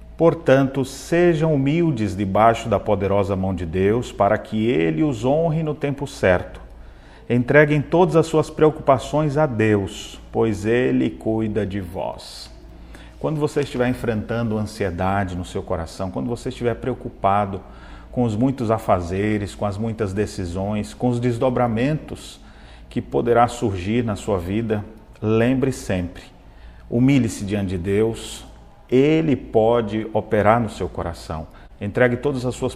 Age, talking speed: 40-59, 135 wpm